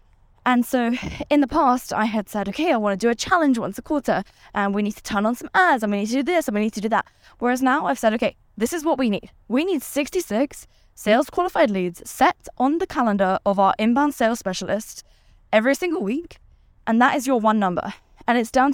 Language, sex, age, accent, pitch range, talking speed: English, female, 10-29, British, 205-255 Hz, 235 wpm